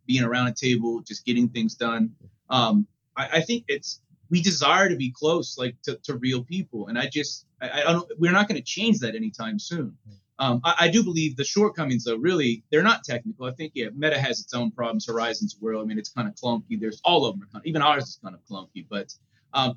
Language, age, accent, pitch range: English, 30-49, American, 120-155 Hz